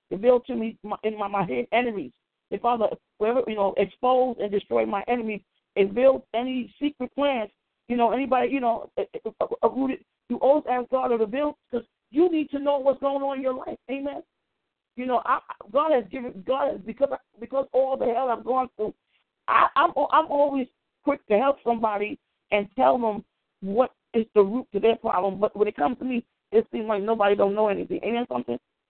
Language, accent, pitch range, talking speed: English, American, 220-270 Hz, 210 wpm